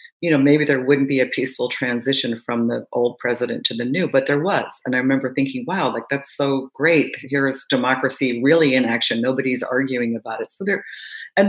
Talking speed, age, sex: 210 wpm, 40-59, female